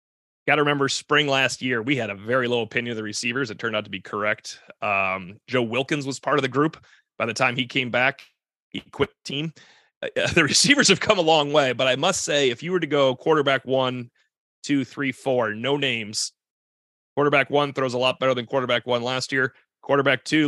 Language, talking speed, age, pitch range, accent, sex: English, 225 wpm, 30-49, 115-140 Hz, American, male